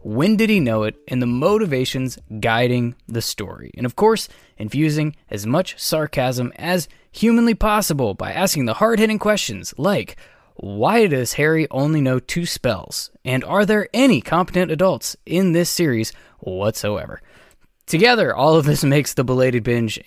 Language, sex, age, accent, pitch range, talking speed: English, male, 20-39, American, 120-160 Hz, 155 wpm